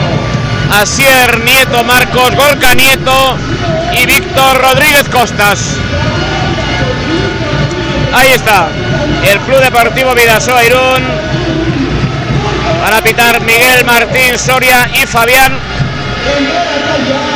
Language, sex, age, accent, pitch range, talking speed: Spanish, male, 60-79, Spanish, 190-230 Hz, 80 wpm